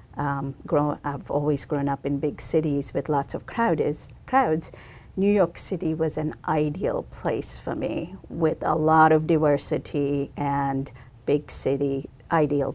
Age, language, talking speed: 50-69, English, 145 wpm